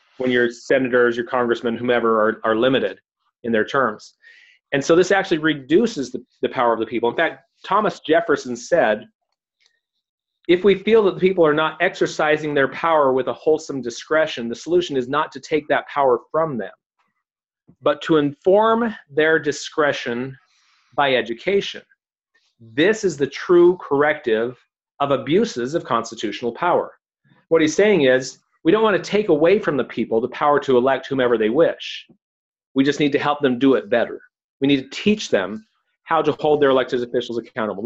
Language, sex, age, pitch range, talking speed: English, male, 40-59, 125-175 Hz, 175 wpm